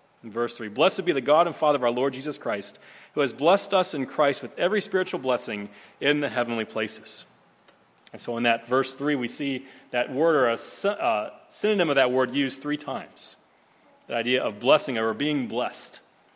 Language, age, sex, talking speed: English, 40-59, male, 200 wpm